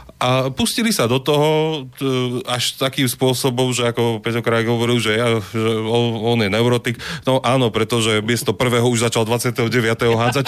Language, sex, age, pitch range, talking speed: Slovak, male, 30-49, 100-120 Hz, 160 wpm